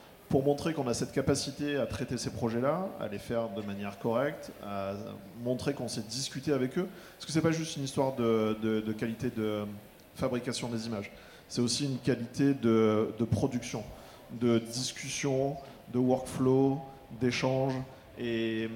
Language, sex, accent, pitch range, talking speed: French, male, French, 110-140 Hz, 165 wpm